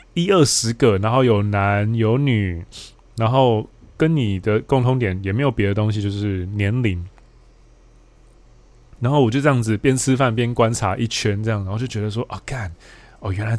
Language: Chinese